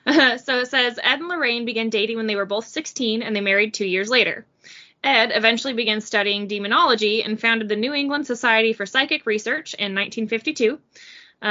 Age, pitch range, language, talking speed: 20-39, 205-260 Hz, English, 190 wpm